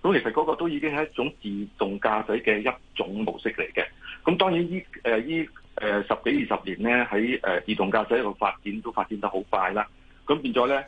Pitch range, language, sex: 100-135 Hz, Chinese, male